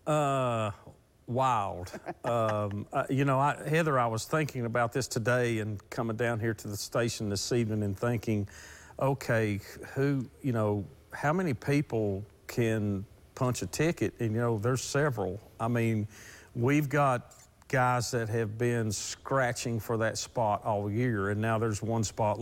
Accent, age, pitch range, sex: American, 50-69, 105-135 Hz, male